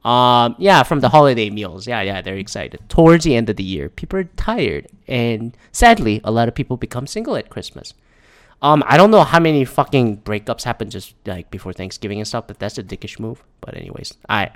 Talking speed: 215 wpm